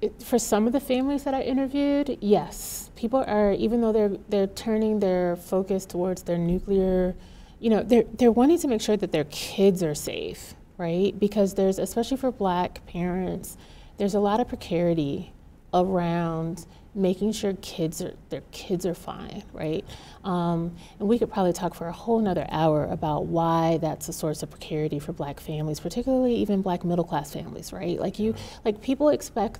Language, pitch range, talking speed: English, 165-215 Hz, 180 wpm